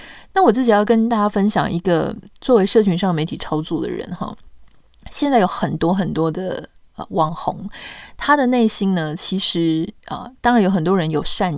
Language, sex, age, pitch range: Chinese, female, 20-39, 165-225 Hz